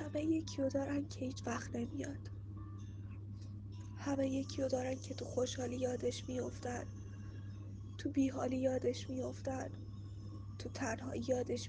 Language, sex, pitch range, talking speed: Persian, female, 100-130 Hz, 115 wpm